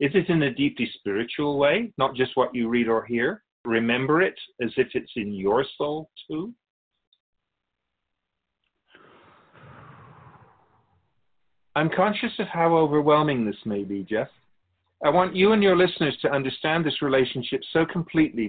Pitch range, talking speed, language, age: 120-155 Hz, 145 wpm, English, 50-69